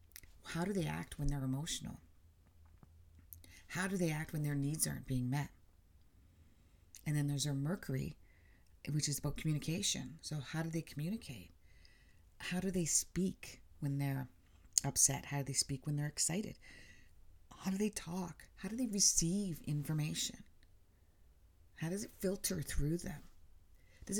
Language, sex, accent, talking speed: English, female, American, 150 wpm